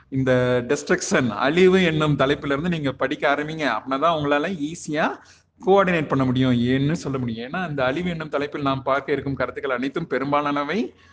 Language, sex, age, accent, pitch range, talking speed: Tamil, male, 30-49, native, 130-165 Hz, 150 wpm